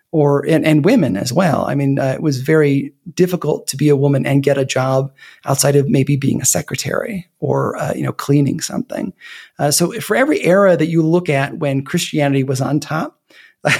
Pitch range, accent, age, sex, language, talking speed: 140-170 Hz, American, 30-49, male, English, 205 wpm